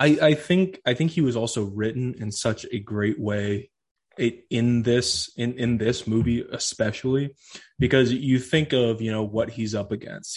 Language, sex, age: English, male, 20-39